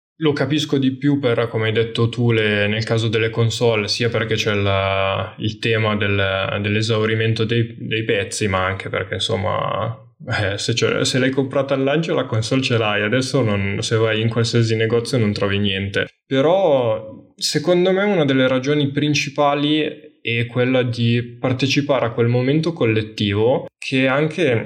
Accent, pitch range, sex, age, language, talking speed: native, 110-130 Hz, male, 10-29, Italian, 165 wpm